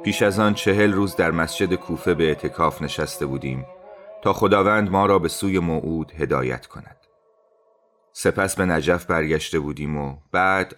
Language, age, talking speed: Persian, 30-49, 155 wpm